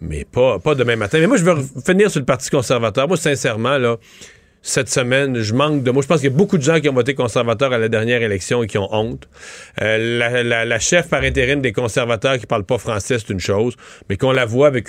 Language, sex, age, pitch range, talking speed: French, male, 40-59, 125-170 Hz, 260 wpm